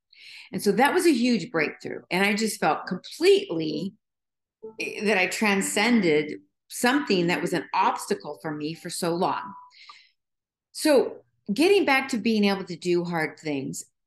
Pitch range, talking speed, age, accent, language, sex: 180-245 Hz, 150 wpm, 50-69, American, English, female